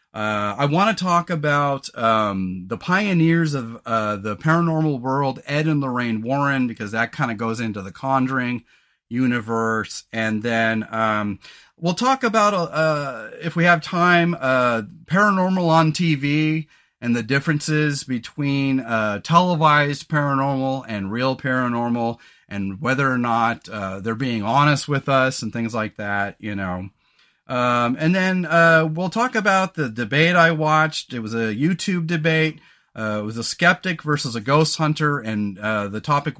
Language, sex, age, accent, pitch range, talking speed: English, male, 30-49, American, 115-160 Hz, 160 wpm